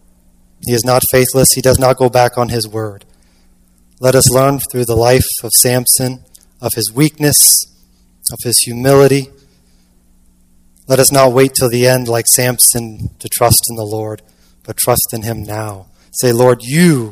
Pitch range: 100-125 Hz